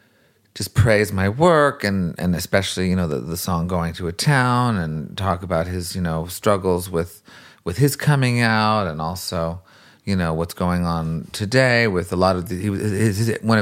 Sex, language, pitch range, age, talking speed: male, English, 90-110 Hz, 30-49, 185 wpm